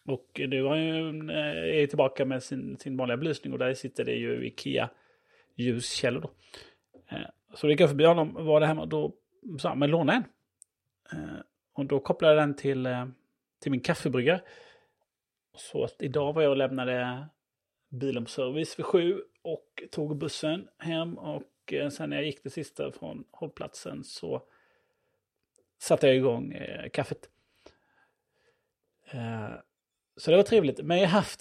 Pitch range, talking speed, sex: 125-165 Hz, 150 wpm, male